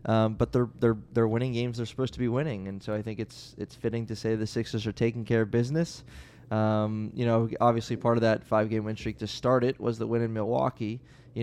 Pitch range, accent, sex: 110-125 Hz, American, male